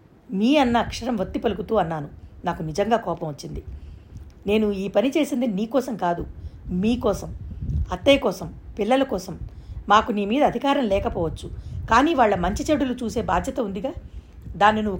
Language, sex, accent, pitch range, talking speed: Telugu, female, native, 185-255 Hz, 145 wpm